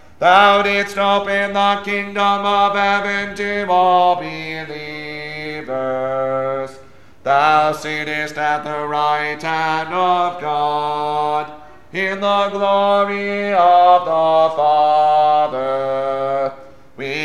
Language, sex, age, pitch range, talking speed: English, male, 40-59, 155-205 Hz, 85 wpm